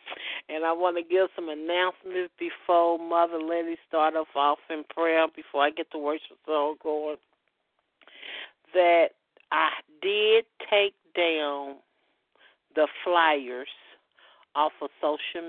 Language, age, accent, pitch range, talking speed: English, 50-69, American, 150-180 Hz, 120 wpm